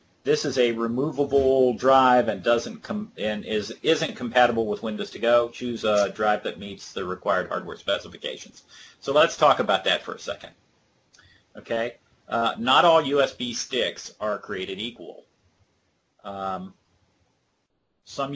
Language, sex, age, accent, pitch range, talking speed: English, male, 40-59, American, 105-130 Hz, 145 wpm